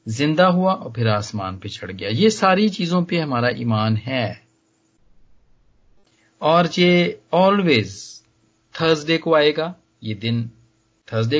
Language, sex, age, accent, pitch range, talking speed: Hindi, male, 40-59, native, 110-170 Hz, 125 wpm